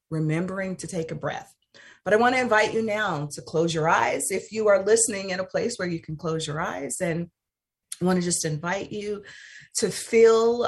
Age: 40-59